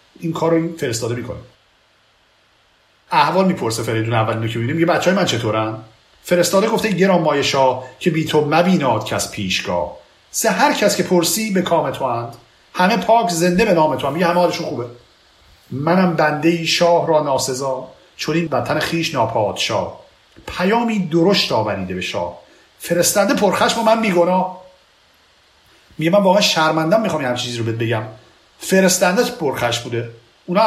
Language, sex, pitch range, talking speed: Persian, male, 110-175 Hz, 145 wpm